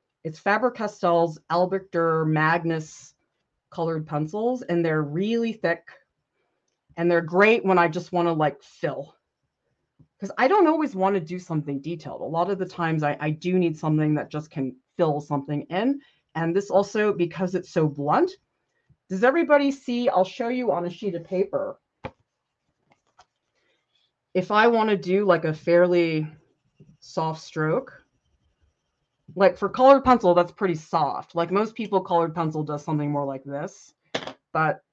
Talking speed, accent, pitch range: 155 wpm, American, 145-190 Hz